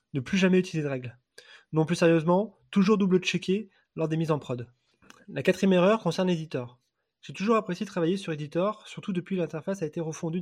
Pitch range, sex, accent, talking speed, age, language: 155-185 Hz, male, French, 195 wpm, 20-39, French